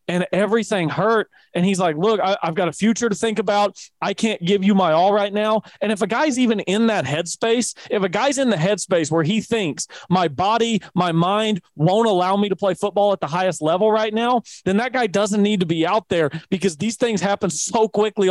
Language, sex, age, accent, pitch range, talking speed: English, male, 40-59, American, 170-210 Hz, 230 wpm